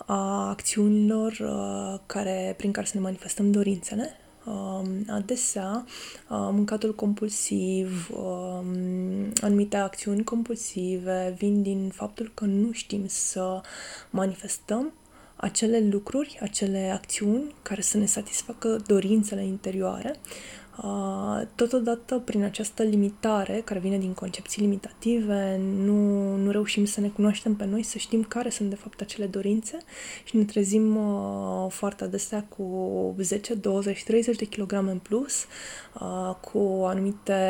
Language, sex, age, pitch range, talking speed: Romanian, female, 20-39, 190-220 Hz, 120 wpm